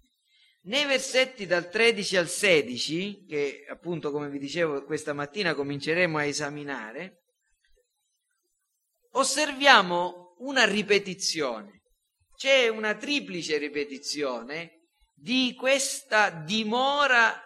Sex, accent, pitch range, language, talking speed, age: male, native, 175-260 Hz, Italian, 90 wpm, 40-59